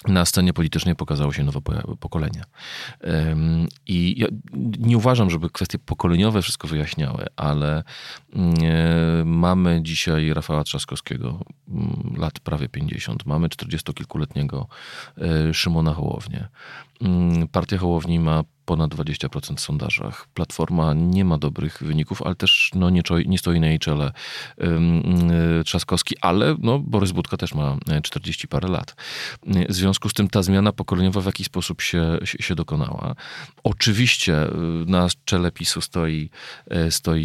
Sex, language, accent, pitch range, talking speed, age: male, Polish, native, 80-110 Hz, 130 wpm, 40-59